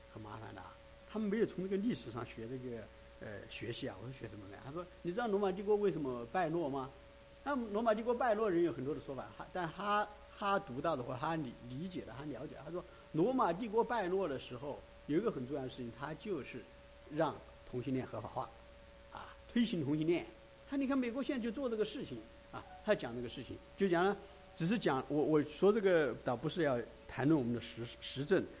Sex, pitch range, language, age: male, 120-180 Hz, English, 60-79